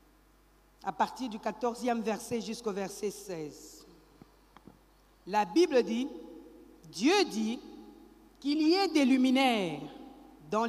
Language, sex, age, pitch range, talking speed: French, female, 50-69, 210-295 Hz, 105 wpm